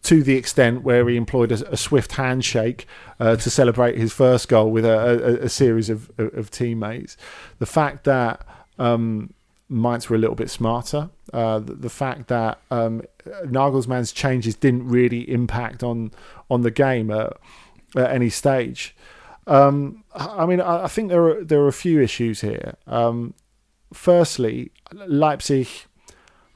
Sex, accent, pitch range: male, British, 115-145 Hz